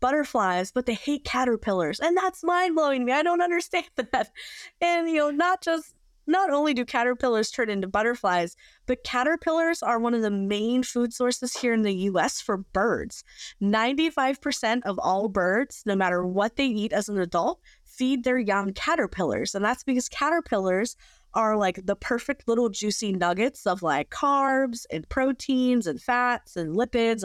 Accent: American